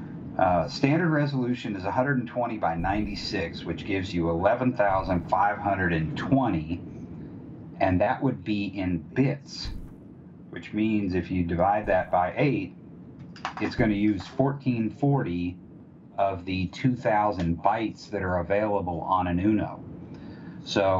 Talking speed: 115 wpm